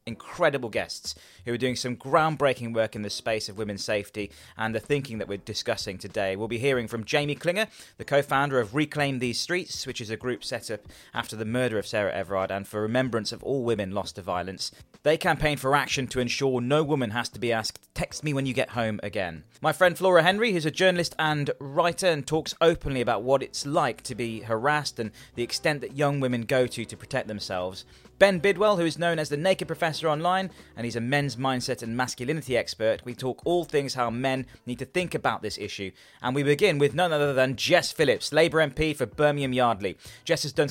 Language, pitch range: English, 110-150 Hz